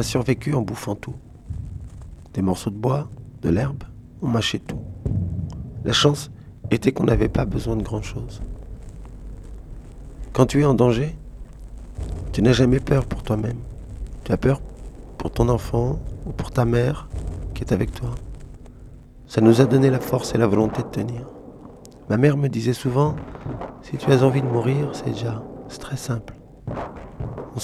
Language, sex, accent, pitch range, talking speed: French, male, French, 110-135 Hz, 165 wpm